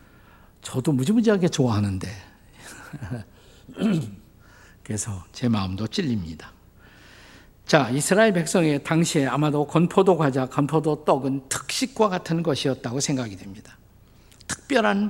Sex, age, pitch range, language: male, 50-69, 110-165 Hz, Korean